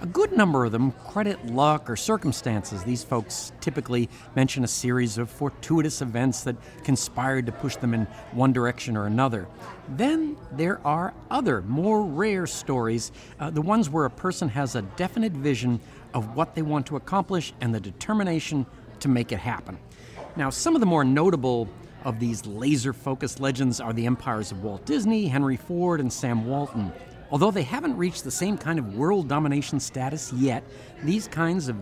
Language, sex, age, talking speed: English, male, 50-69, 175 wpm